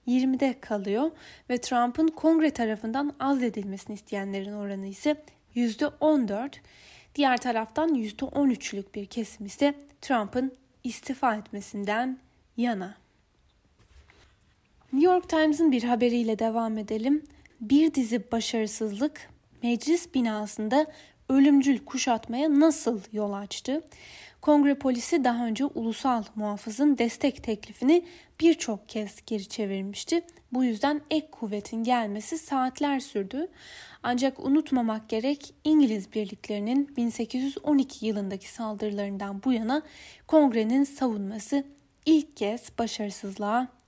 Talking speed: 100 wpm